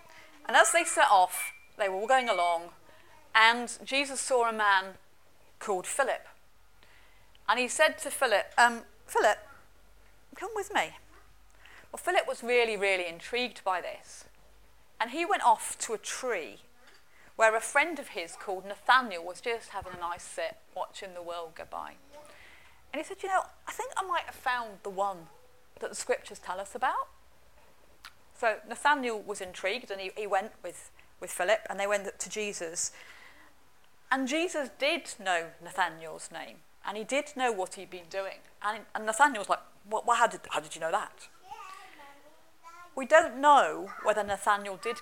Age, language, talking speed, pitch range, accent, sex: 30-49, English, 170 wpm, 190-295 Hz, British, female